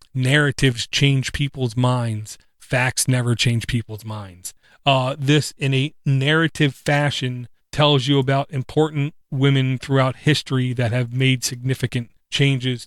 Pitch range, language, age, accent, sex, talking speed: 120-140 Hz, English, 30-49, American, male, 125 wpm